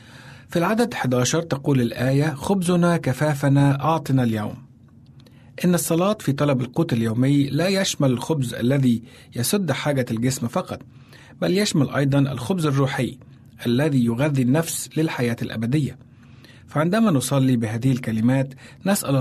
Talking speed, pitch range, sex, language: 120 wpm, 125-150 Hz, male, Arabic